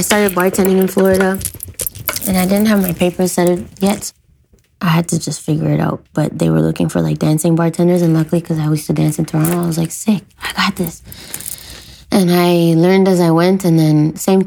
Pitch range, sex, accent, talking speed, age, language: 150-175 Hz, female, American, 225 wpm, 20-39, English